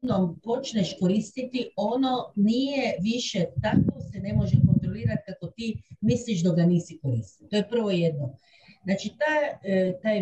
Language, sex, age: Croatian, female, 50-69